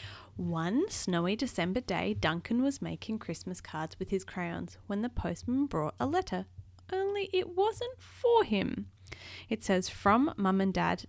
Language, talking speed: English, 155 wpm